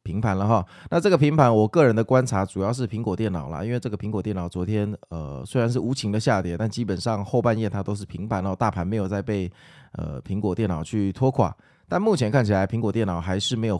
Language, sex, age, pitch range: Chinese, male, 20-39, 95-120 Hz